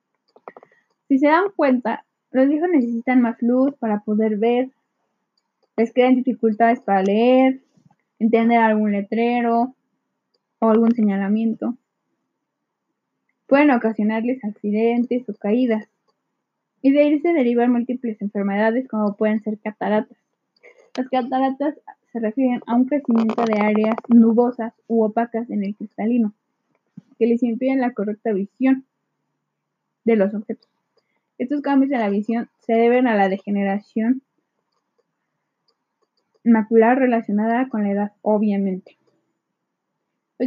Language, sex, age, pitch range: English, female, 10-29, 215-255 Hz